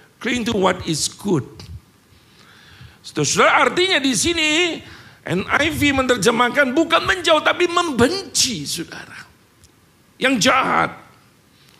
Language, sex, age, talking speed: Indonesian, male, 50-69, 90 wpm